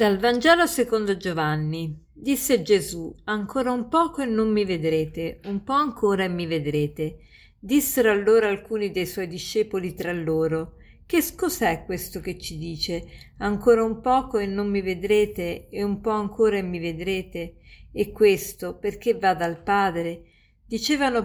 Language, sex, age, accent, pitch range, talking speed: Italian, female, 50-69, native, 180-235 Hz, 155 wpm